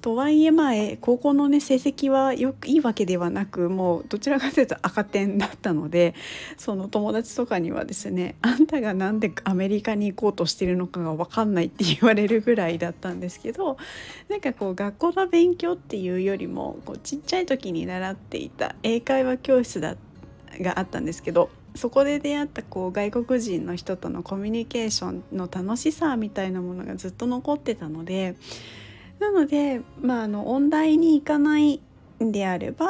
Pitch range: 190-280 Hz